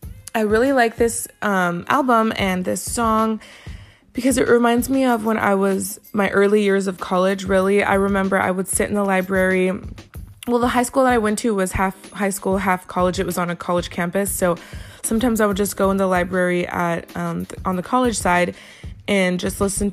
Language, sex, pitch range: English, female, 185-220 Hz